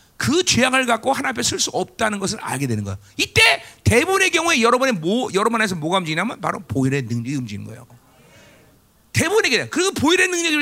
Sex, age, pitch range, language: male, 40-59, 165-255 Hz, Korean